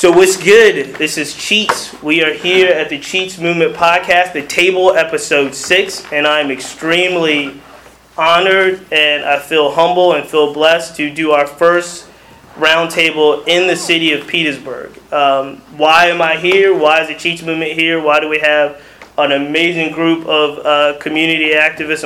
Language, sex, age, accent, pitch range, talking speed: English, male, 20-39, American, 145-170 Hz, 170 wpm